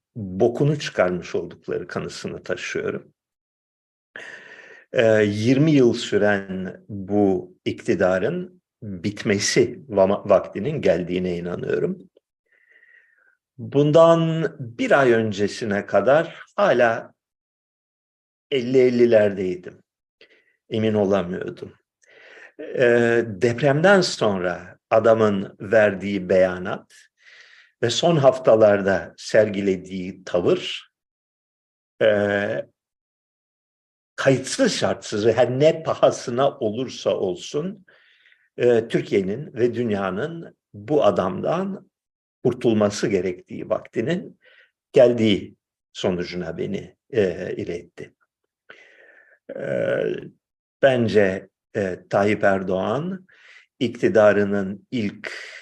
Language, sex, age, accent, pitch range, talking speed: Turkish, male, 50-69, native, 100-140 Hz, 65 wpm